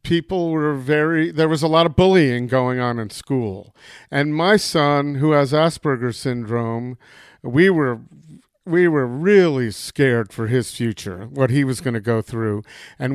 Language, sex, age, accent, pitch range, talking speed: English, male, 50-69, American, 135-165 Hz, 170 wpm